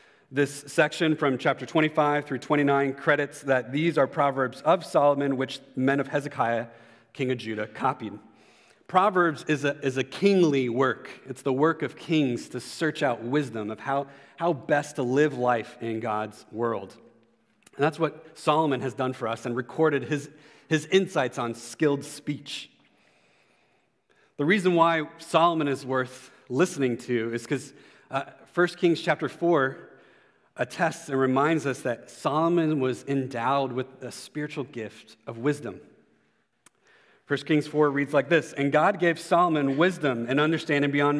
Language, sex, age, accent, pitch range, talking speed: English, male, 40-59, American, 130-155 Hz, 155 wpm